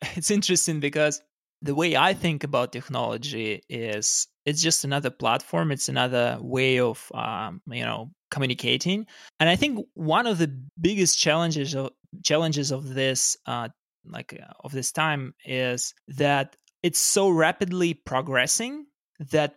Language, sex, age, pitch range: English, male, 20-39, 130-165 Hz